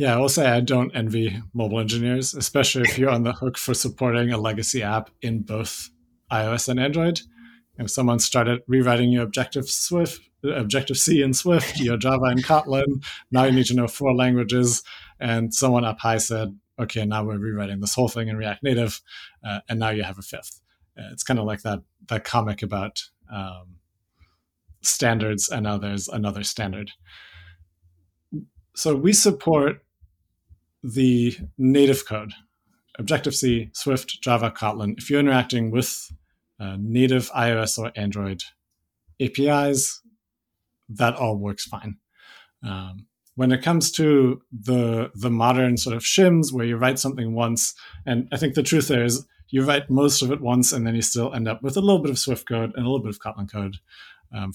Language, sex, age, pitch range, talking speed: English, male, 30-49, 105-130 Hz, 175 wpm